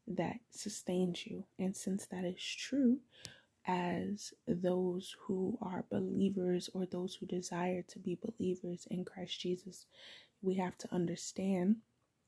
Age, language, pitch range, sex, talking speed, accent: 20-39, English, 175-190 Hz, female, 130 wpm, American